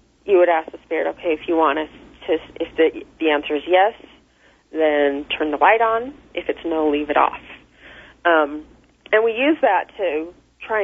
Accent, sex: American, female